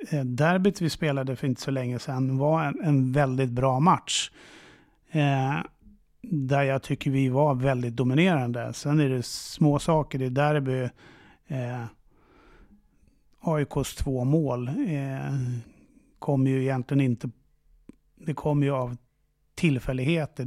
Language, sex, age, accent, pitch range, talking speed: English, male, 30-49, Swedish, 130-150 Hz, 125 wpm